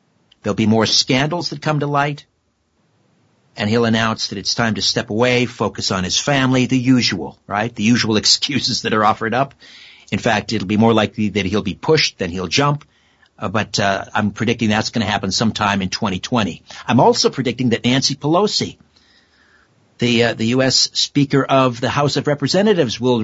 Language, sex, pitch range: English, male, 105-135 Hz